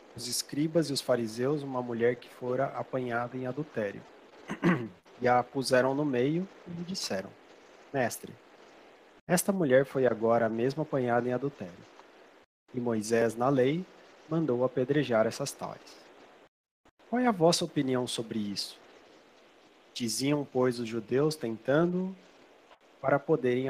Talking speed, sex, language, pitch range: 130 wpm, male, Portuguese, 120-155 Hz